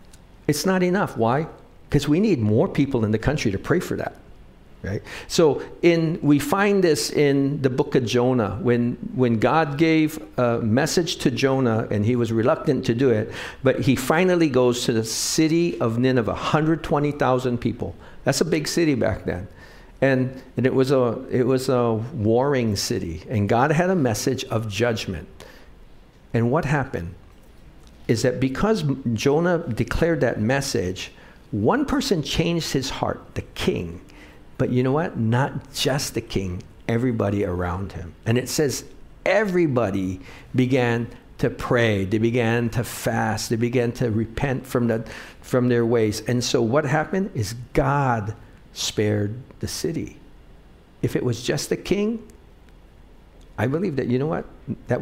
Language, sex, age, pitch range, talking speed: English, male, 60-79, 110-145 Hz, 160 wpm